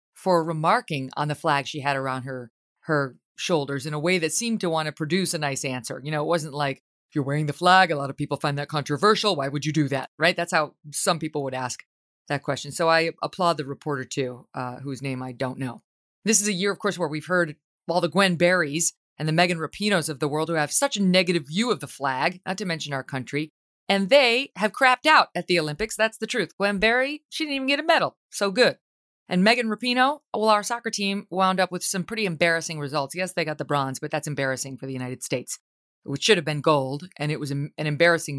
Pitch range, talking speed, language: 145-195 Hz, 245 wpm, English